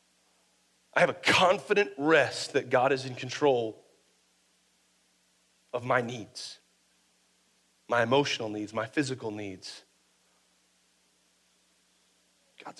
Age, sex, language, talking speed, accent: 40-59, male, English, 95 wpm, American